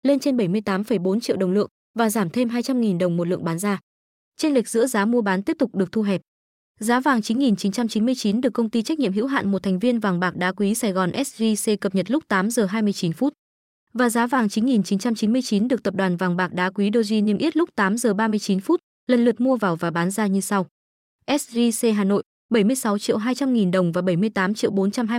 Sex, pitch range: female, 195-245 Hz